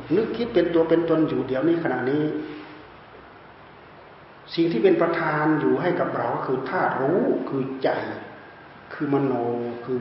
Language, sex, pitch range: Thai, male, 130-175 Hz